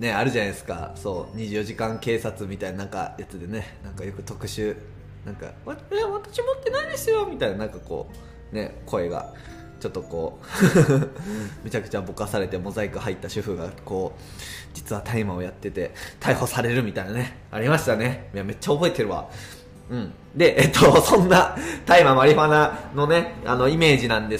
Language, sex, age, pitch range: Japanese, male, 20-39, 100-145 Hz